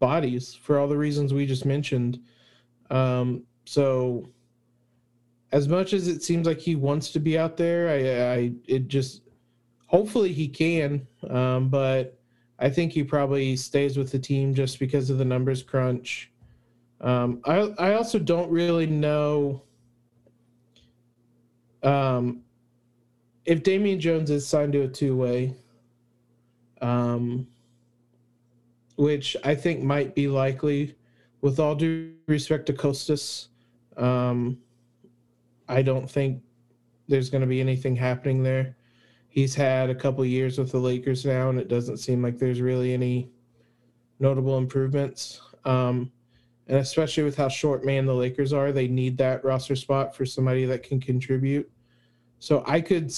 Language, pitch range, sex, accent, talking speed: English, 120-145 Hz, male, American, 145 wpm